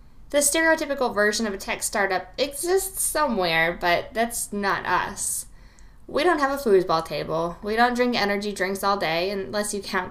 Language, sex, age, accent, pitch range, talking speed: English, female, 10-29, American, 195-255 Hz, 170 wpm